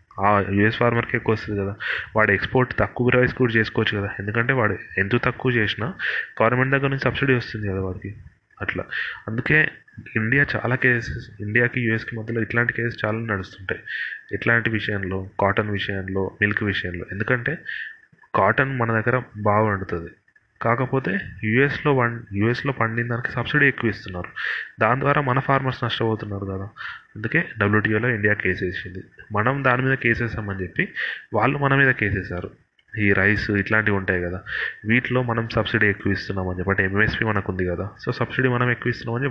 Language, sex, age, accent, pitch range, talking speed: Telugu, male, 30-49, native, 100-120 Hz, 150 wpm